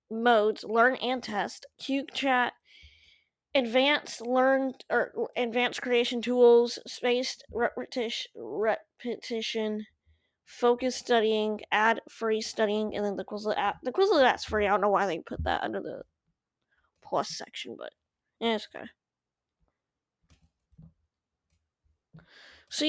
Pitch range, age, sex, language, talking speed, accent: 205-260 Hz, 20-39, female, English, 115 wpm, American